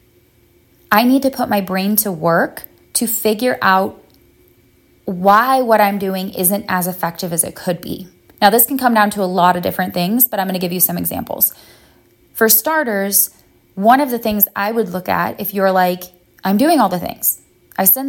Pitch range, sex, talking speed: 185-220 Hz, female, 200 wpm